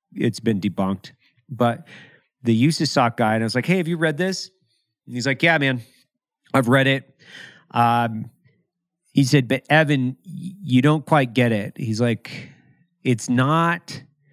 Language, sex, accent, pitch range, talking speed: English, male, American, 110-140 Hz, 165 wpm